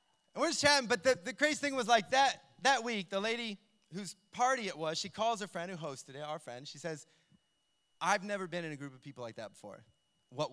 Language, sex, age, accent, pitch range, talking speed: English, male, 30-49, American, 155-230 Hz, 245 wpm